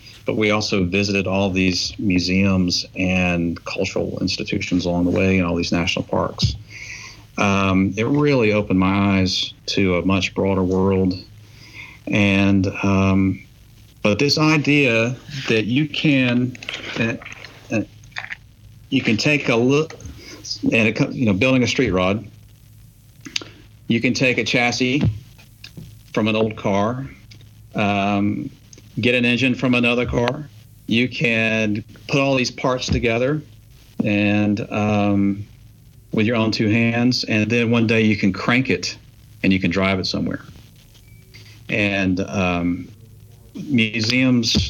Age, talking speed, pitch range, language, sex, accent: 50-69, 135 wpm, 100-120 Hz, English, male, American